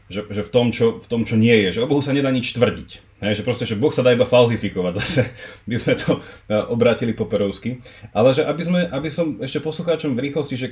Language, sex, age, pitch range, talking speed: Slovak, male, 30-49, 105-125 Hz, 240 wpm